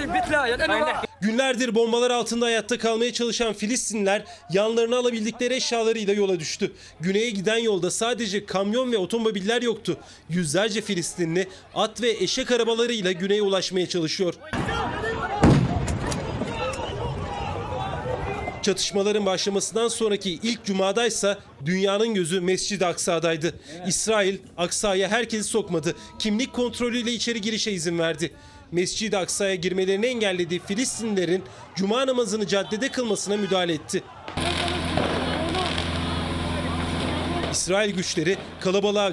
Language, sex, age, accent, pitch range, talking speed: Turkish, male, 30-49, native, 175-225 Hz, 95 wpm